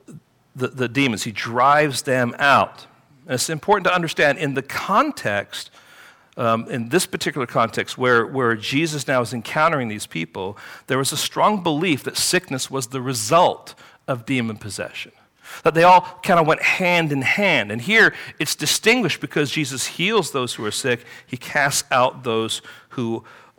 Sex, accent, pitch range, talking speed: male, American, 115-165 Hz, 170 wpm